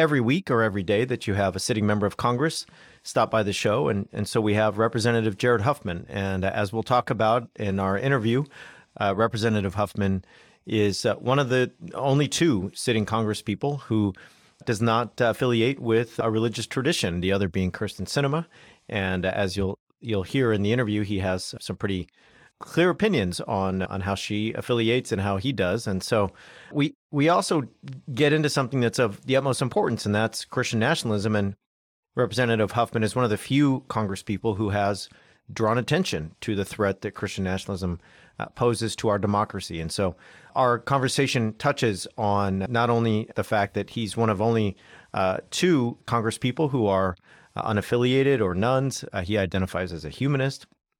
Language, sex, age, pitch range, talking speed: English, male, 40-59, 100-125 Hz, 180 wpm